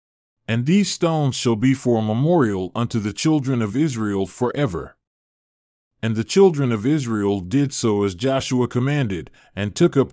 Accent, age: American, 40-59